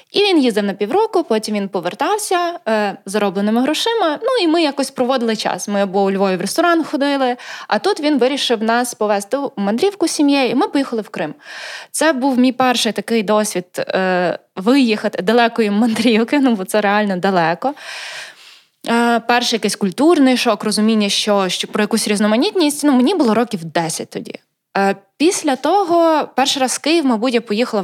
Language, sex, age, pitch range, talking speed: Ukrainian, female, 20-39, 200-260 Hz, 170 wpm